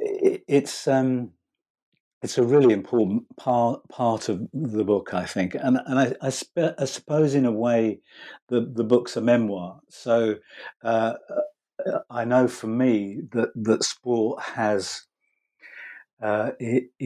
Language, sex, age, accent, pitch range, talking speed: English, male, 50-69, British, 105-130 Hz, 135 wpm